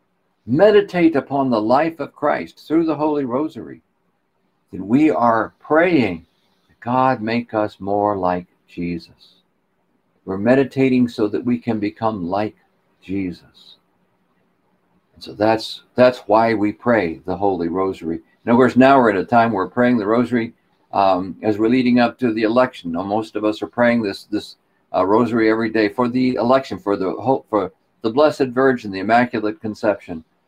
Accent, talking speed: American, 170 wpm